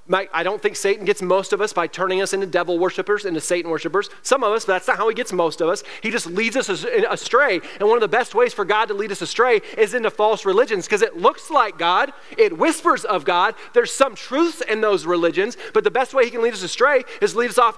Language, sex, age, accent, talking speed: English, male, 30-49, American, 265 wpm